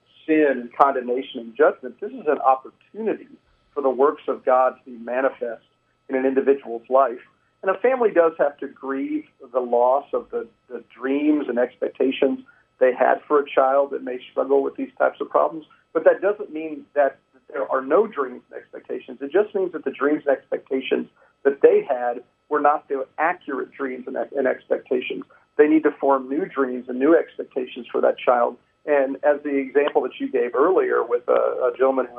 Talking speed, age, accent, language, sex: 190 wpm, 50-69, American, English, male